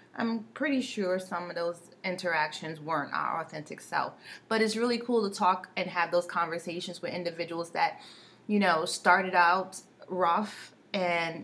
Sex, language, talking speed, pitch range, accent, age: female, English, 155 wpm, 180-220 Hz, American, 30-49